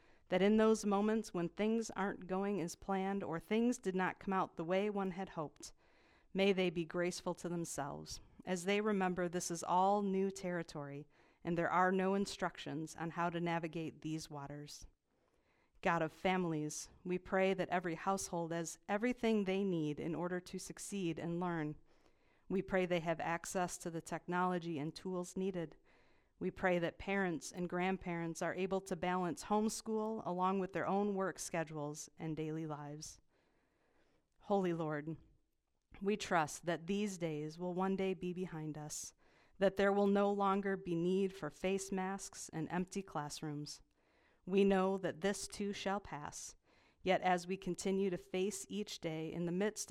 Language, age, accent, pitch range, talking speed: English, 50-69, American, 165-195 Hz, 165 wpm